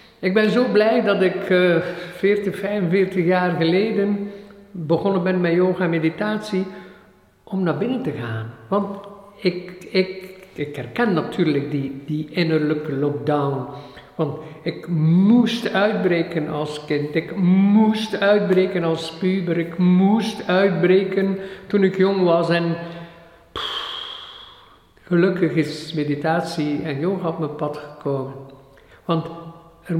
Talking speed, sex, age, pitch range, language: 120 wpm, male, 50-69, 155-200 Hz, Dutch